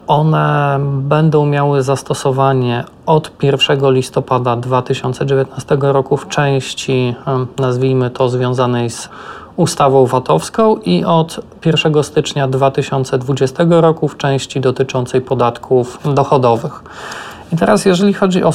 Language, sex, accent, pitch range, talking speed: Polish, male, native, 130-160 Hz, 105 wpm